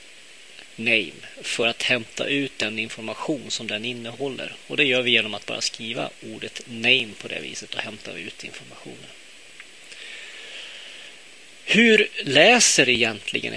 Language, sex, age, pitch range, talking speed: Swedish, male, 30-49, 115-165 Hz, 135 wpm